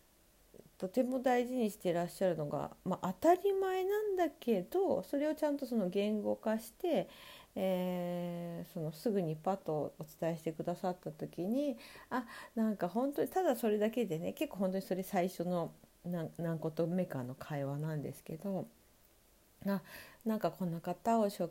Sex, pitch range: female, 170-240 Hz